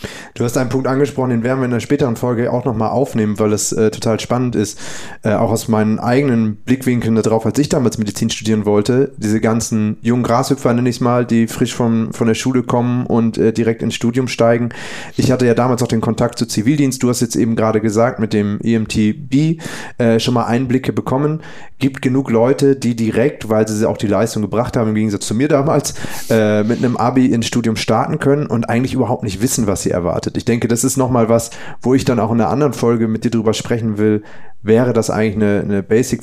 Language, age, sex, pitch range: German, 30-49, male, 110-125 Hz